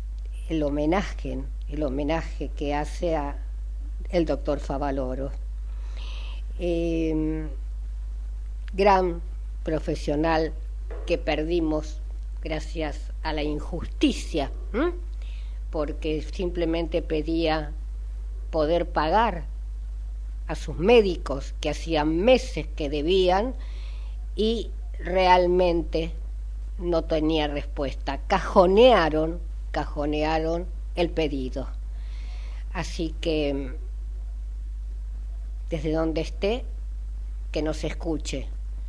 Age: 50-69